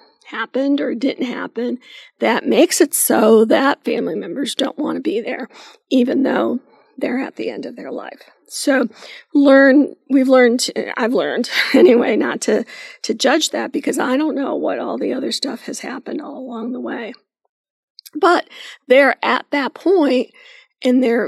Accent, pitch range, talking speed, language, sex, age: American, 250-310 Hz, 165 wpm, English, female, 50-69